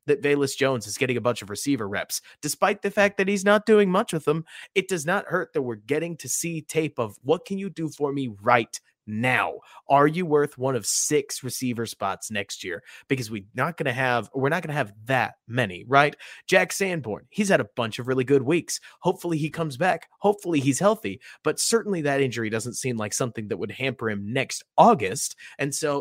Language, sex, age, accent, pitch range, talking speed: English, male, 30-49, American, 125-170 Hz, 220 wpm